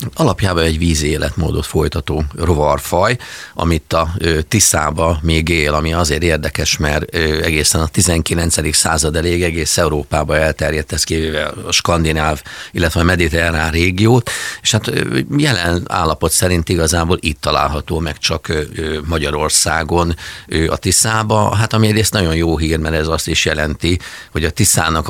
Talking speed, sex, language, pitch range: 140 wpm, male, Hungarian, 75-90 Hz